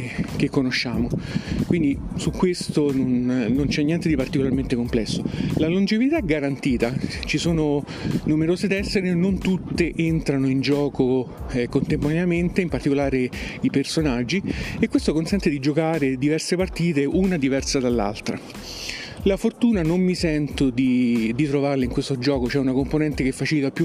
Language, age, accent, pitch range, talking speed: Italian, 40-59, native, 135-165 Hz, 145 wpm